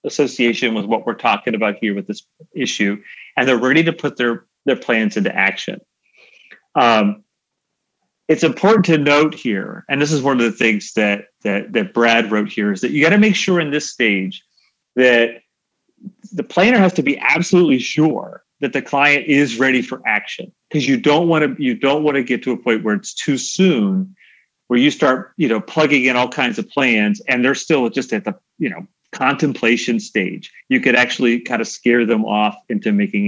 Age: 40-59